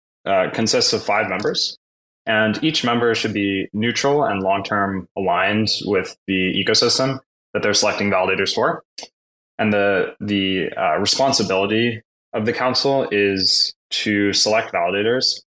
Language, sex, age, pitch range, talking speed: English, male, 20-39, 90-110 Hz, 130 wpm